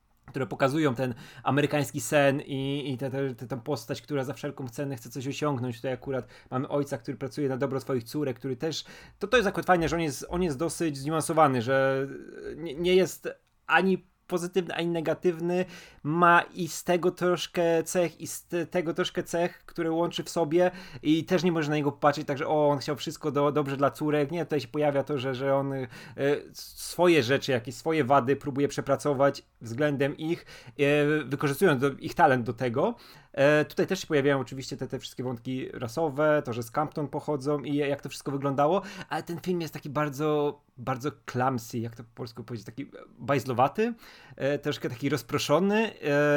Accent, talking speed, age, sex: native, 180 wpm, 20-39, male